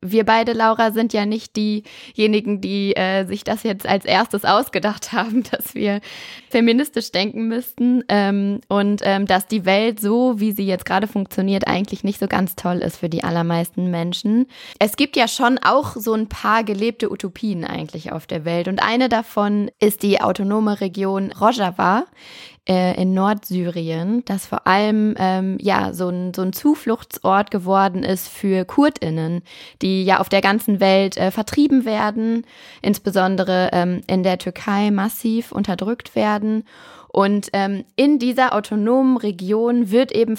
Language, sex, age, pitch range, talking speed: German, female, 20-39, 190-225 Hz, 155 wpm